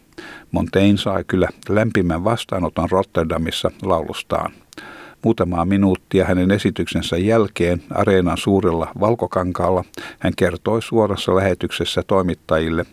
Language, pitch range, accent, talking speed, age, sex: Finnish, 85-105 Hz, native, 95 wpm, 50-69, male